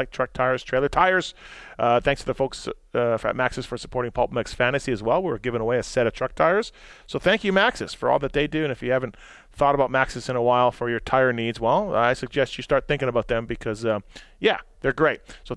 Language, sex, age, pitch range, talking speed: English, male, 30-49, 125-165 Hz, 250 wpm